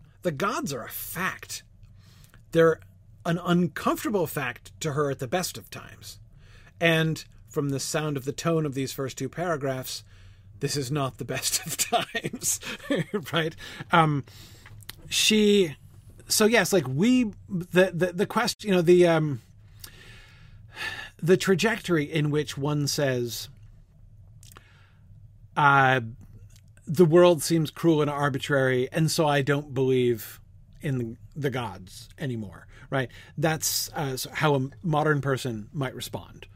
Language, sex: English, male